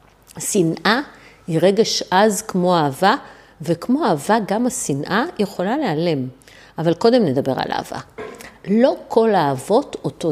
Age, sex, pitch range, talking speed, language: 50-69, female, 160-225 Hz, 120 wpm, Hebrew